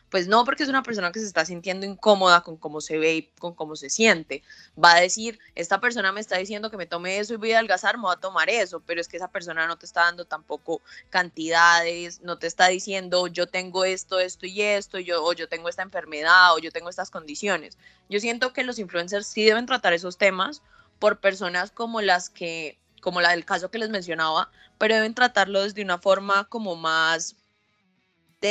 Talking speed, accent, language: 220 wpm, Colombian, Spanish